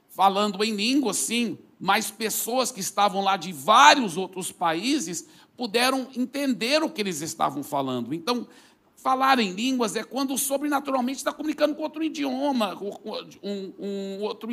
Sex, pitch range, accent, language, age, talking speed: male, 170-245 Hz, Brazilian, Portuguese, 60-79, 150 wpm